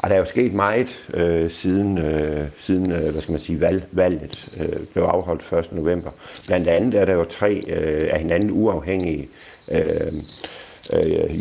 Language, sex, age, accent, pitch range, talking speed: Danish, male, 60-79, native, 80-95 Hz, 125 wpm